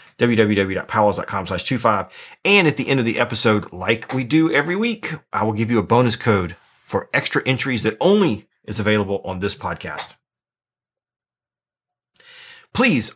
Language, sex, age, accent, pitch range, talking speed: English, male, 30-49, American, 110-155 Hz, 150 wpm